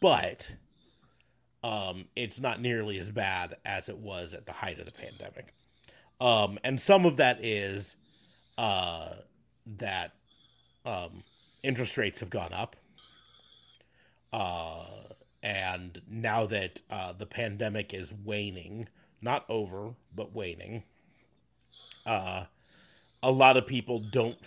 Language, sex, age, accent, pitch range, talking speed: English, male, 30-49, American, 95-120 Hz, 120 wpm